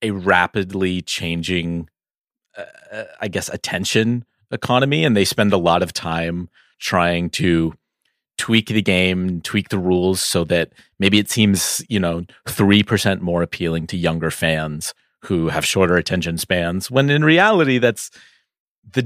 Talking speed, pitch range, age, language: 145 wpm, 85-110 Hz, 30-49, English